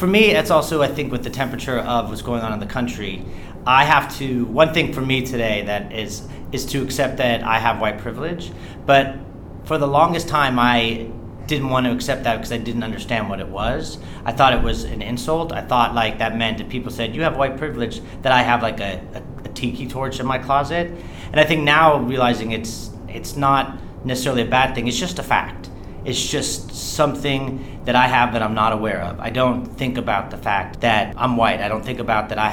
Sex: male